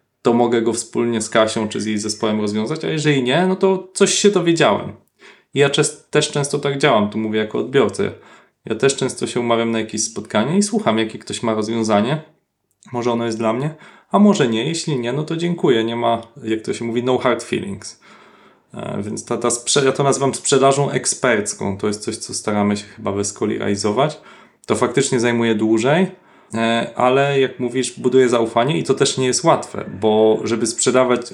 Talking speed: 195 wpm